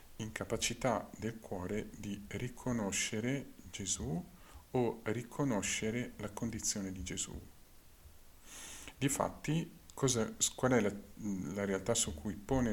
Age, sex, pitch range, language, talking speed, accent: 50-69, male, 90-115 Hz, Italian, 105 wpm, native